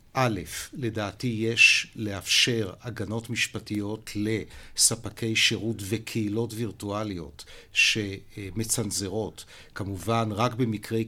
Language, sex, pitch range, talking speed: Hebrew, male, 100-115 Hz, 75 wpm